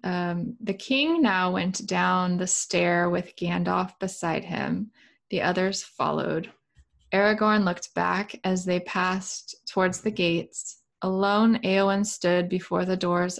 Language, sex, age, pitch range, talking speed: English, female, 20-39, 180-205 Hz, 135 wpm